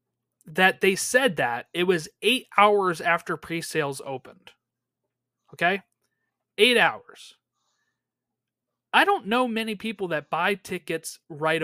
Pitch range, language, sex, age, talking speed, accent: 150-205 Hz, English, male, 30-49, 120 wpm, American